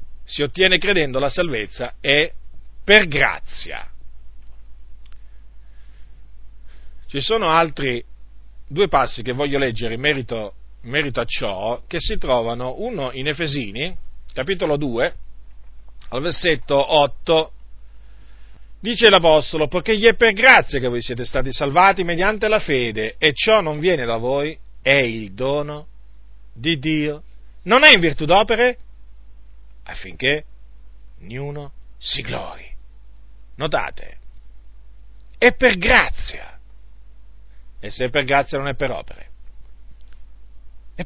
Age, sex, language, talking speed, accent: 40-59, male, Italian, 120 wpm, native